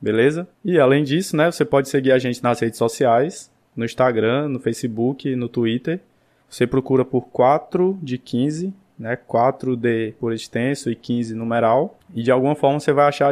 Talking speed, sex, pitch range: 180 wpm, male, 120-145 Hz